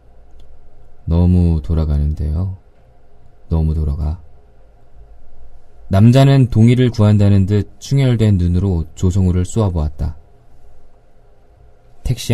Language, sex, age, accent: Korean, male, 20-39, native